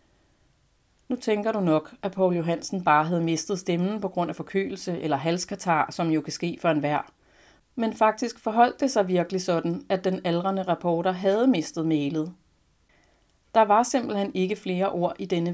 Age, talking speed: 30-49, 175 wpm